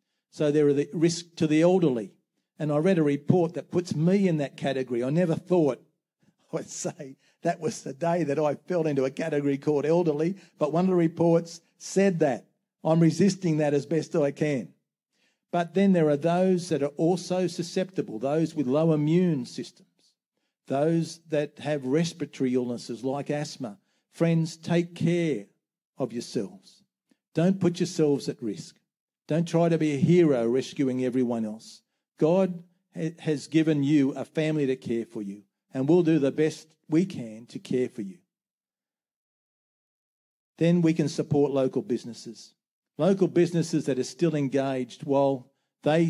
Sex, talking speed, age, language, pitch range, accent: male, 165 wpm, 50-69, English, 135-170 Hz, Australian